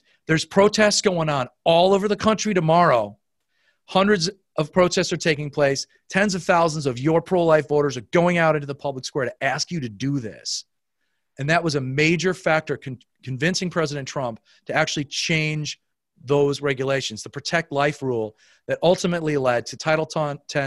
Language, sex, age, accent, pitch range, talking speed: English, male, 40-59, American, 135-170 Hz, 170 wpm